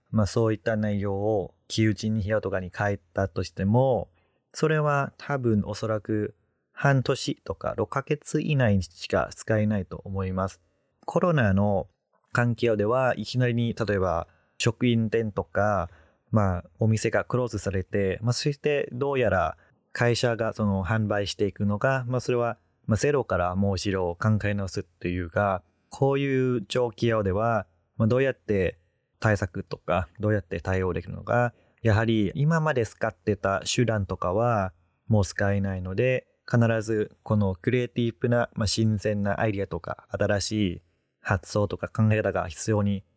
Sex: male